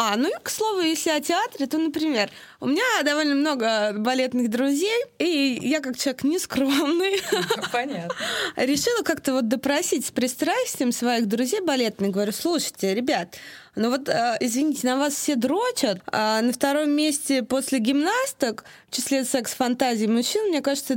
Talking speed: 150 wpm